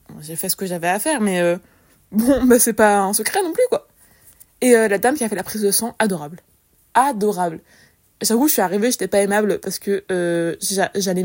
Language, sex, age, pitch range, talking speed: French, female, 20-39, 185-225 Hz, 225 wpm